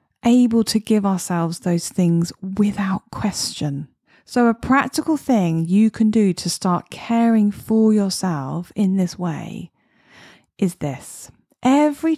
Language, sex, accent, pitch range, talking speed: English, female, British, 175-220 Hz, 130 wpm